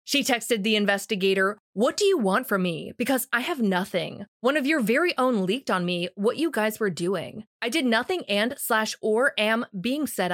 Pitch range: 200-270 Hz